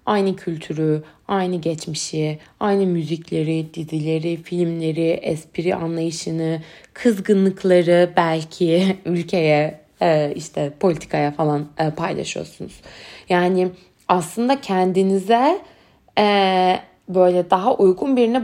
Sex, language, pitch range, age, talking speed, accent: female, Turkish, 180-225 Hz, 20-39, 80 wpm, native